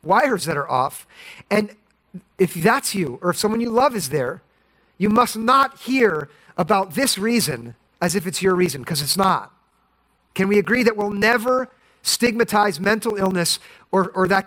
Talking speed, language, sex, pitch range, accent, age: 175 wpm, English, male, 170-220 Hz, American, 40-59